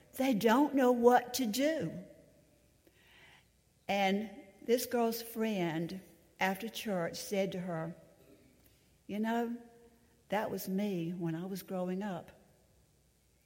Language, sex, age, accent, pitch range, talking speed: English, female, 60-79, American, 180-220 Hz, 110 wpm